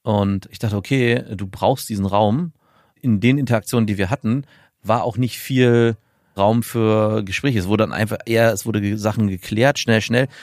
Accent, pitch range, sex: German, 100-120 Hz, male